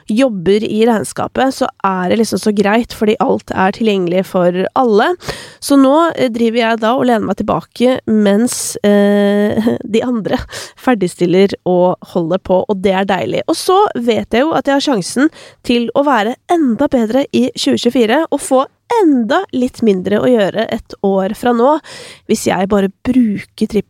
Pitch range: 200-270 Hz